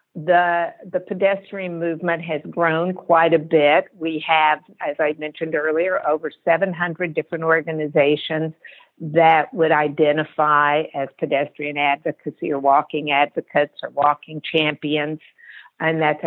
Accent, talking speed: American, 120 wpm